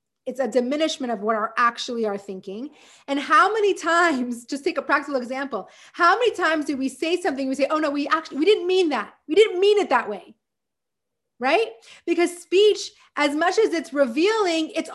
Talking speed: 200 wpm